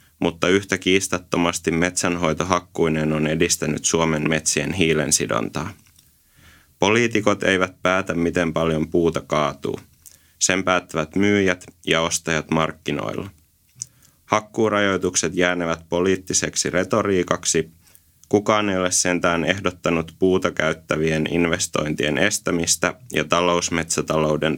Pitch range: 80-95 Hz